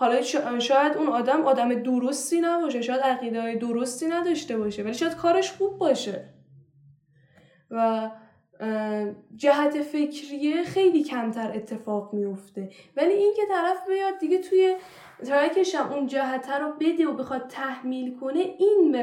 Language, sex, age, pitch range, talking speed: Persian, female, 10-29, 225-305 Hz, 135 wpm